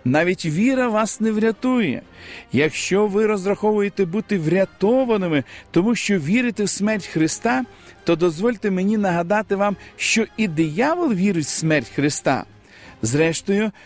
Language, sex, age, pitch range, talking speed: Ukrainian, male, 50-69, 170-225 Hz, 125 wpm